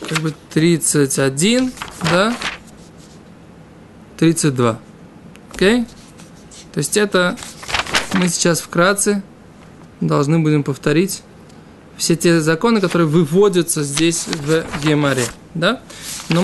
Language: Russian